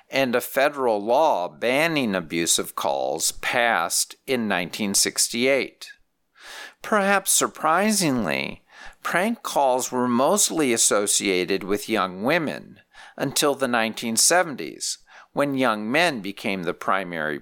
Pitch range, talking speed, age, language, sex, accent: 110-180 Hz, 100 wpm, 50-69, English, male, American